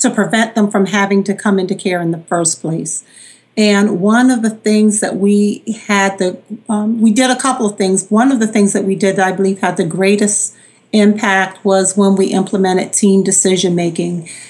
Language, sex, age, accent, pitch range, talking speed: English, female, 40-59, American, 190-215 Hz, 205 wpm